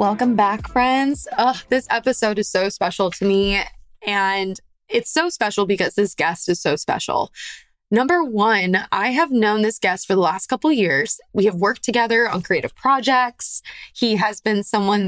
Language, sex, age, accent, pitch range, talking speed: English, female, 20-39, American, 185-240 Hz, 175 wpm